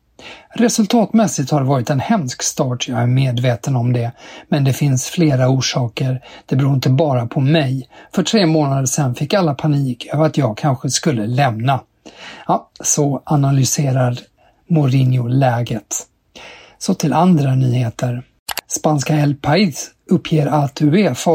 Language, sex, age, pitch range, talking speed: Swedish, male, 50-69, 130-160 Hz, 145 wpm